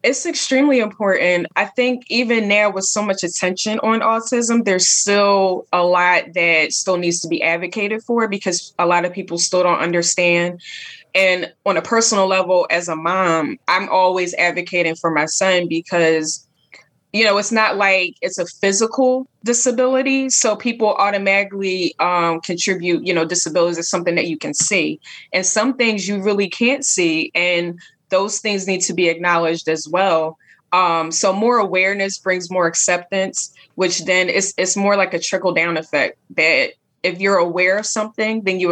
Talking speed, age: 170 wpm, 20-39